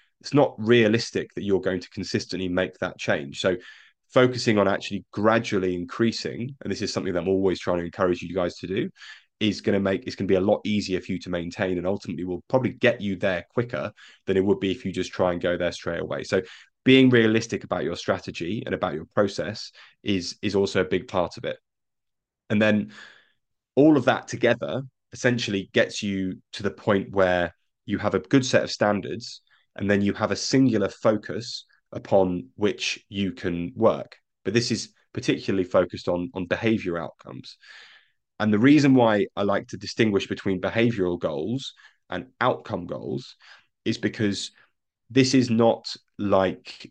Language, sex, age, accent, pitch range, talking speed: English, male, 20-39, British, 90-115 Hz, 185 wpm